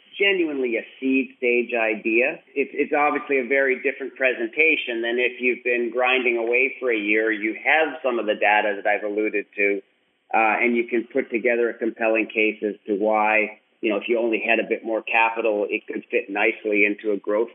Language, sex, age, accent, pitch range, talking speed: English, male, 40-59, American, 115-140 Hz, 205 wpm